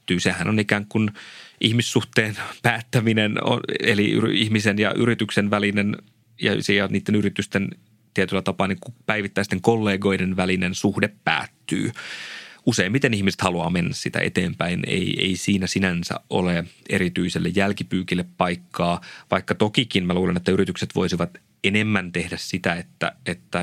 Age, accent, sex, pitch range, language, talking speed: 30-49, native, male, 90-105 Hz, Finnish, 125 wpm